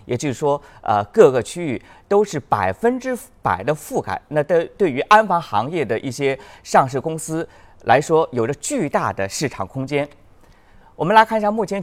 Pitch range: 115-190 Hz